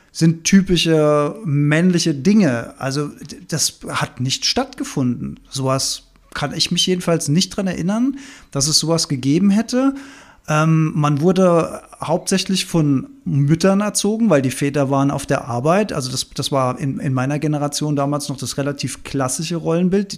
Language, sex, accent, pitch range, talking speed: German, male, German, 140-195 Hz, 150 wpm